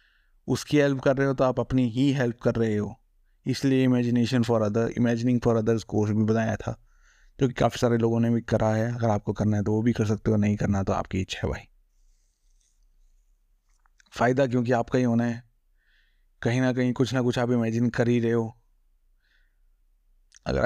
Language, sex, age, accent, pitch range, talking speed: Hindi, male, 20-39, native, 115-125 Hz, 200 wpm